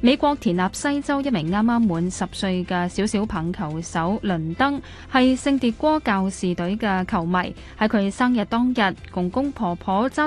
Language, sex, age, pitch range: Chinese, female, 10-29, 185-245 Hz